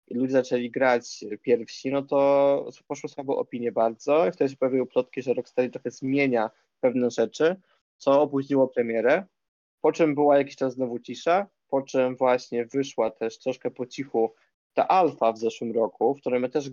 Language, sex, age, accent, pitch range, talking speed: Polish, male, 20-39, native, 115-140 Hz, 180 wpm